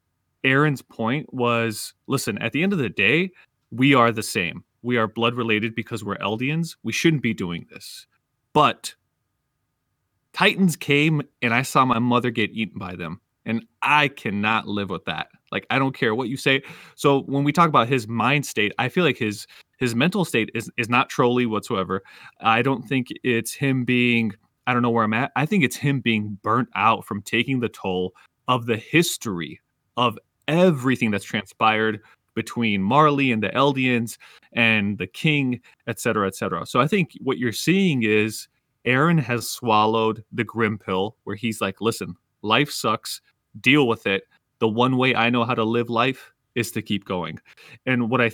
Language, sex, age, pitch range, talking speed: English, male, 20-39, 110-135 Hz, 185 wpm